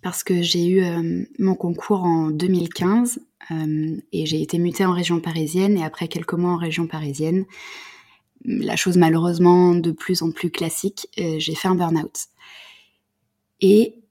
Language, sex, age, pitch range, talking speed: French, female, 20-39, 165-195 Hz, 160 wpm